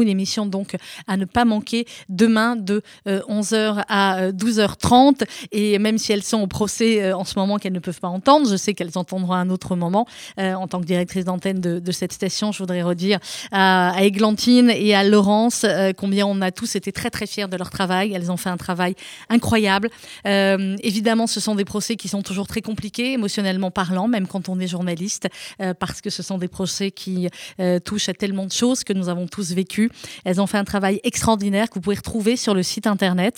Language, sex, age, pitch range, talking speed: French, female, 30-49, 185-220 Hz, 220 wpm